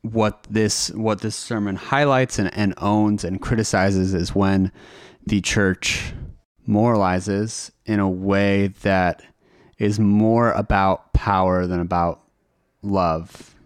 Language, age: English, 30-49